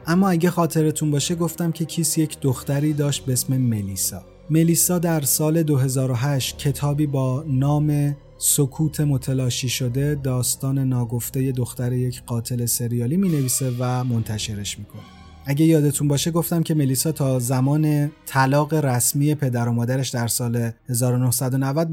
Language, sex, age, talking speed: Persian, male, 30-49, 135 wpm